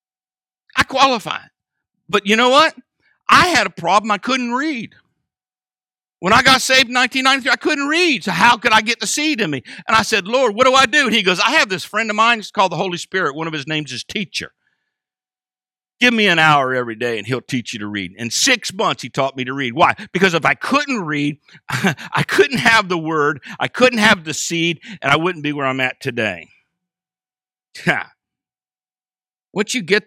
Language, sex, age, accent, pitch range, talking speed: English, male, 50-69, American, 135-215 Hz, 210 wpm